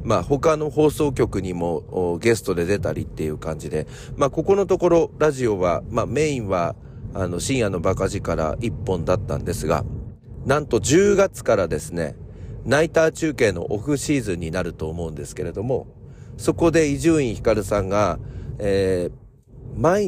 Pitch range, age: 95-135 Hz, 40-59